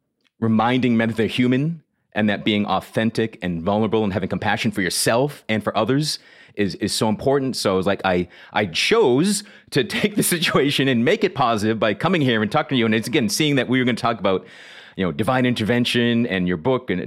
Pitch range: 110-145 Hz